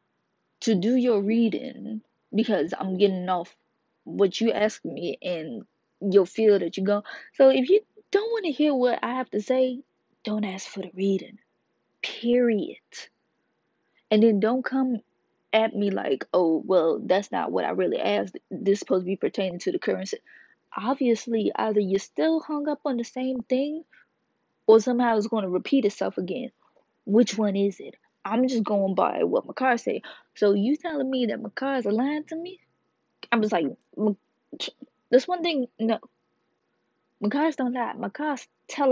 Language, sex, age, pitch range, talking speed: English, female, 20-39, 205-255 Hz, 175 wpm